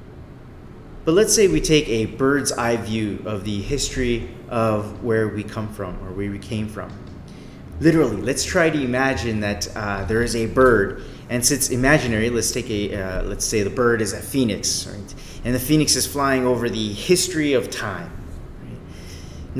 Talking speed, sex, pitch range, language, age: 180 wpm, male, 105-135 Hz, English, 30-49